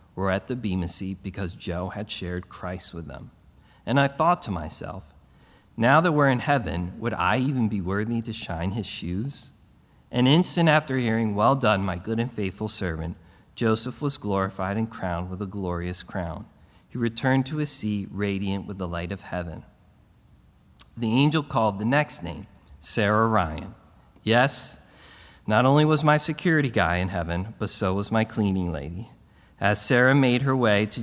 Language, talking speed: English, 175 wpm